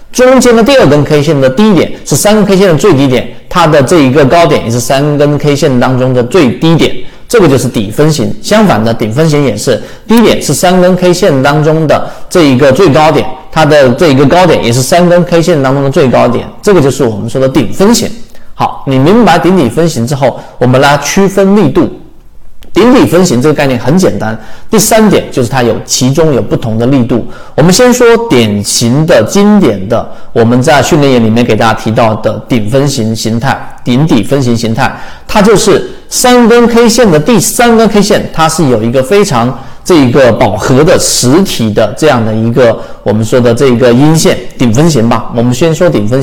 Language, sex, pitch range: Chinese, male, 120-180 Hz